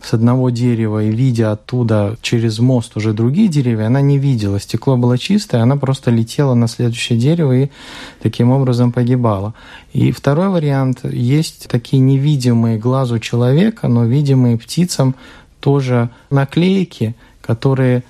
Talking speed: 135 wpm